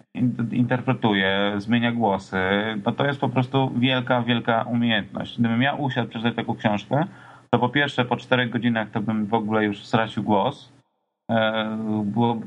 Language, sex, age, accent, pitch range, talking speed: Polish, male, 30-49, native, 105-125 Hz, 150 wpm